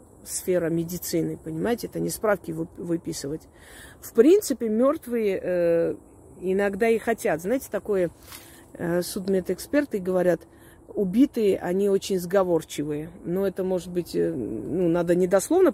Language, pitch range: Russian, 170-215 Hz